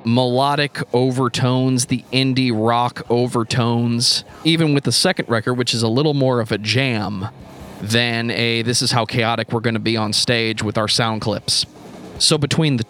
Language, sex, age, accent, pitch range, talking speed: English, male, 30-49, American, 115-135 Hz, 170 wpm